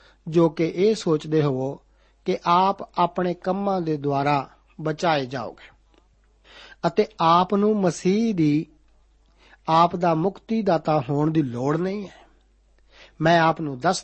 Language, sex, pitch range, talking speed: Punjabi, male, 150-195 Hz, 135 wpm